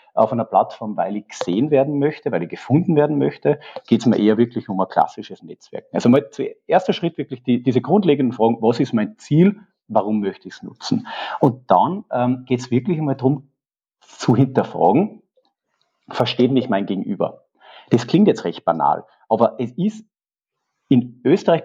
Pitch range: 110-160 Hz